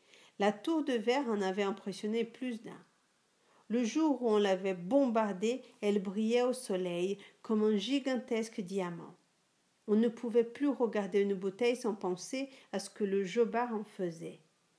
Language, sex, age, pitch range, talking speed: French, female, 50-69, 205-270 Hz, 160 wpm